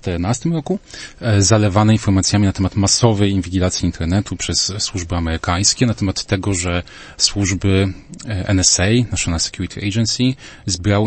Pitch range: 90-115 Hz